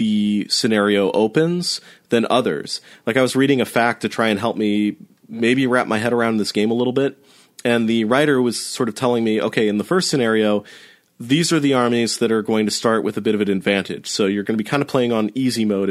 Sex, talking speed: male, 245 wpm